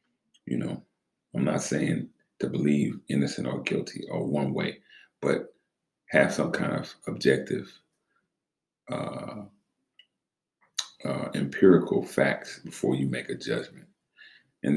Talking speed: 120 wpm